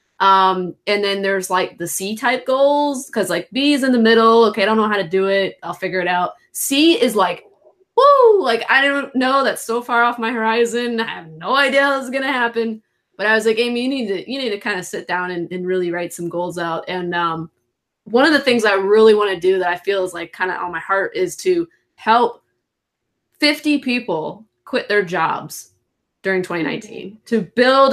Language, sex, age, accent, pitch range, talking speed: English, female, 20-39, American, 190-240 Hz, 230 wpm